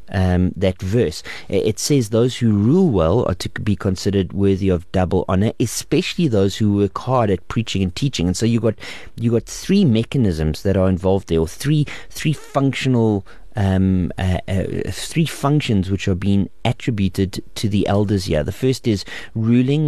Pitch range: 95-125 Hz